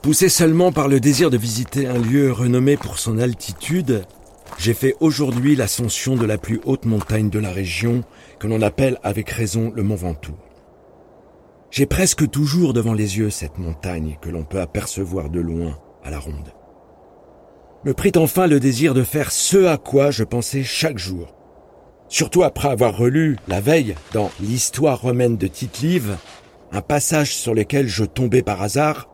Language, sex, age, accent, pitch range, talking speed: French, male, 50-69, French, 105-145 Hz, 170 wpm